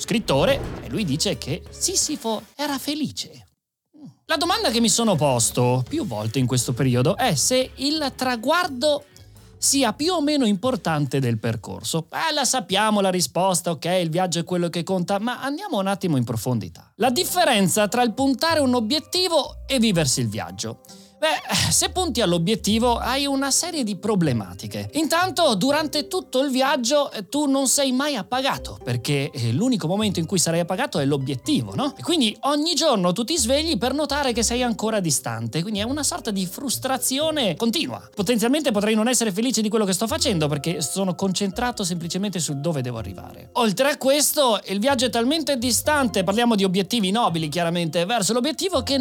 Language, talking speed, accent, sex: Italian, 175 wpm, native, male